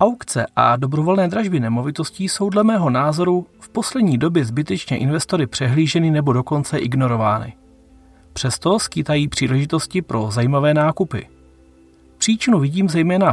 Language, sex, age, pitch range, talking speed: Czech, male, 30-49, 125-180 Hz, 120 wpm